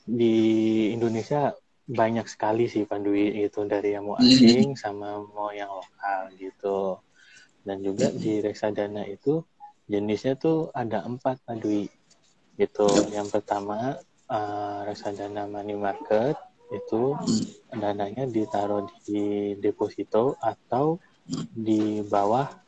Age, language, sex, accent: 20-39, Indonesian, male, native